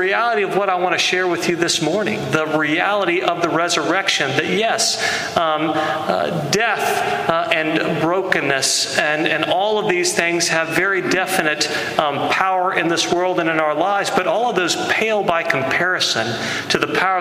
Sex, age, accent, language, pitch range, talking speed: male, 40-59, American, English, 155-190 Hz, 180 wpm